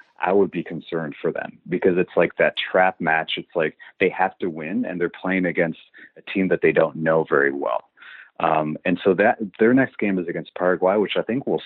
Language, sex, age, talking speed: English, male, 30-49, 225 wpm